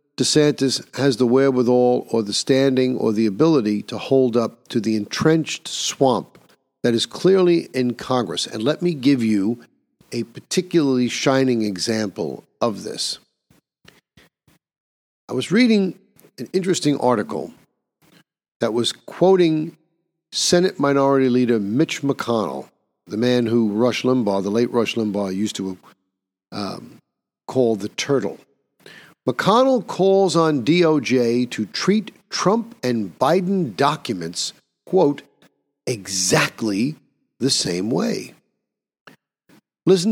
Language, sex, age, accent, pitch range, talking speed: English, male, 50-69, American, 115-160 Hz, 115 wpm